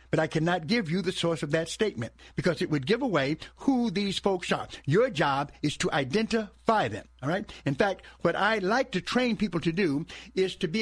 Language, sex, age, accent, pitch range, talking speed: English, male, 60-79, American, 160-230 Hz, 220 wpm